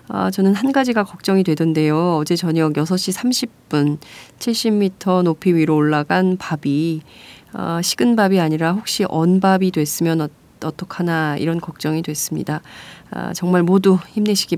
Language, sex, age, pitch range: Korean, female, 30-49, 155-195 Hz